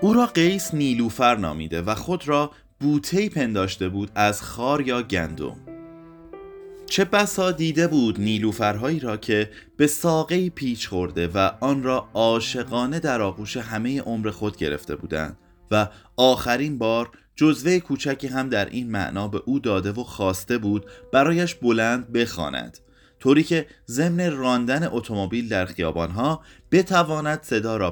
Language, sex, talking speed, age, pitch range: Persian, male, 140 wpm, 30-49, 105-150 Hz